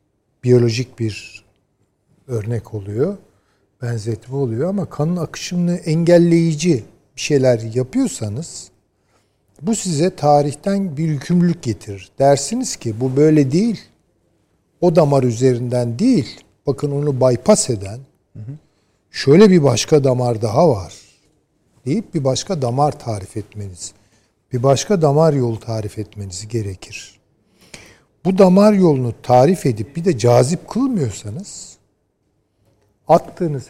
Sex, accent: male, native